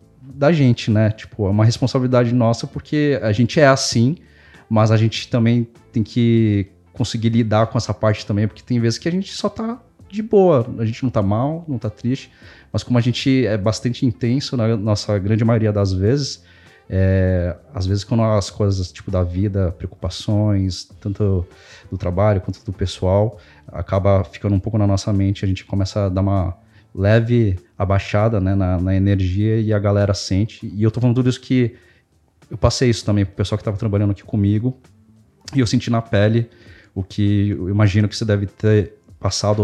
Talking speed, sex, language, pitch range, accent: 195 wpm, male, Portuguese, 100-120 Hz, Brazilian